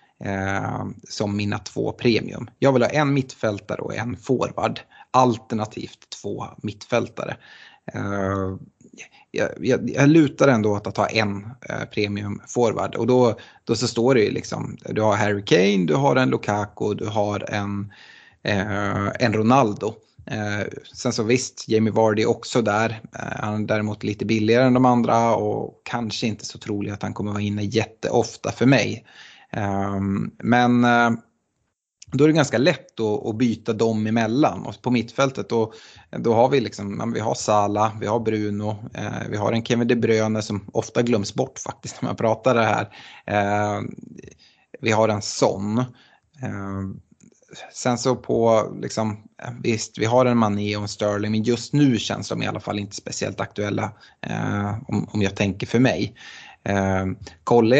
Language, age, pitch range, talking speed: Swedish, 30-49, 105-120 Hz, 160 wpm